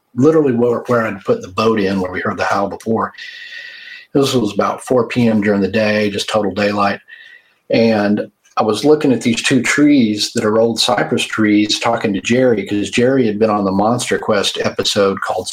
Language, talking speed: English, 195 wpm